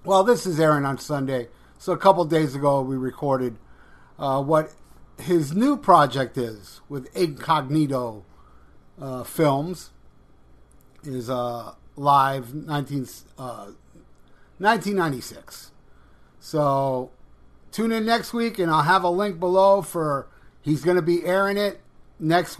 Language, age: English, 50-69